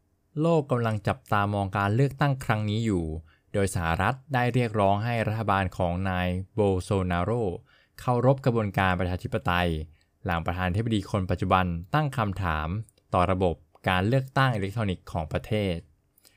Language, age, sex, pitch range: Thai, 20-39, male, 90-120 Hz